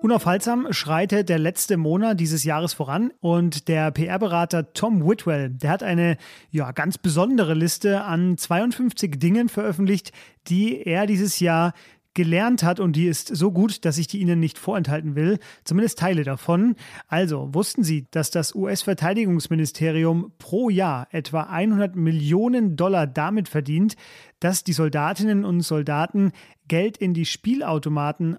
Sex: male